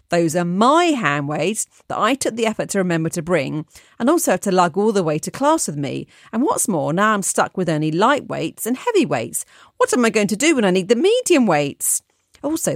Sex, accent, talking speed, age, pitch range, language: female, British, 245 wpm, 40-59, 160-235 Hz, English